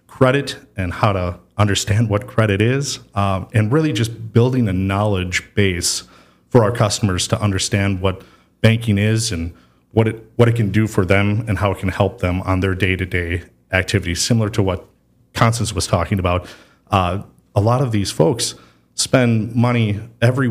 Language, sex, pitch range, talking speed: English, male, 95-115 Hz, 175 wpm